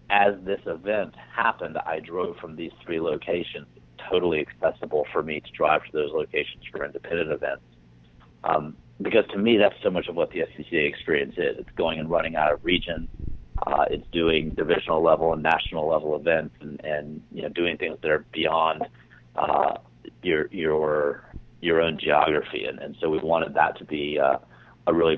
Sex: male